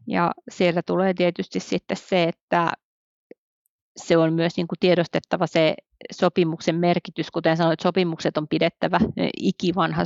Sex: female